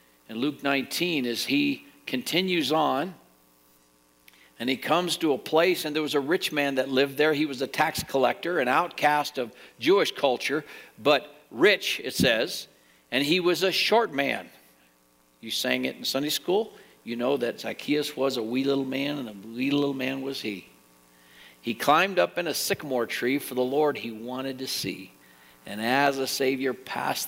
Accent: American